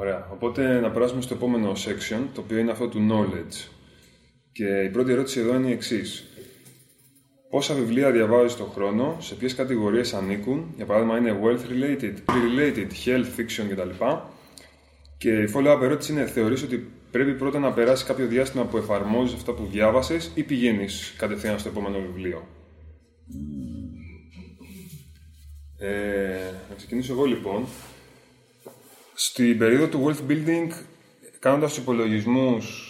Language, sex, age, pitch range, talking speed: Greek, male, 20-39, 100-125 Hz, 135 wpm